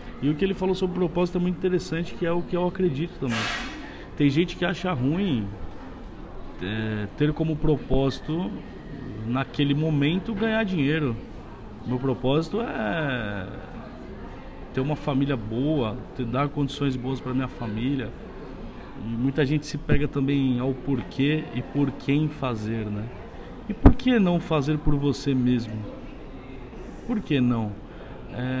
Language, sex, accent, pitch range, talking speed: Portuguese, male, Brazilian, 130-175 Hz, 145 wpm